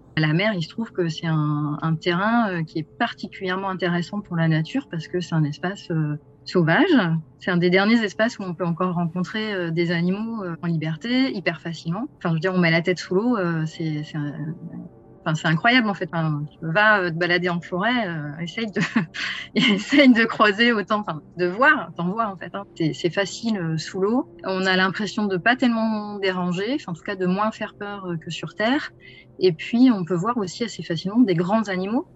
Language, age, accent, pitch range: French, 30-49, French, 160-205 Hz